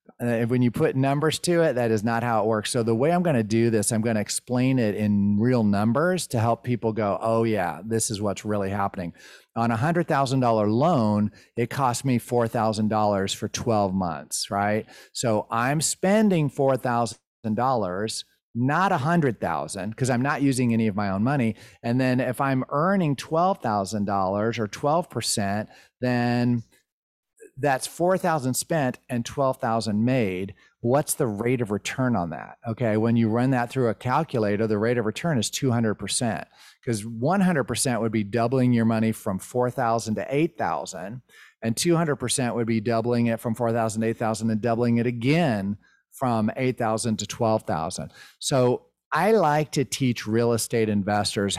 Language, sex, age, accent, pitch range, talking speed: English, male, 40-59, American, 110-130 Hz, 165 wpm